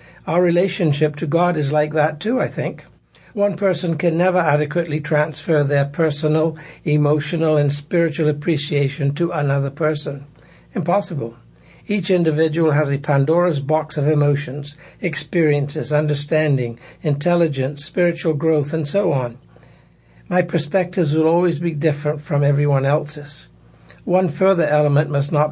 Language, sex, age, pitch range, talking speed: English, male, 60-79, 145-165 Hz, 130 wpm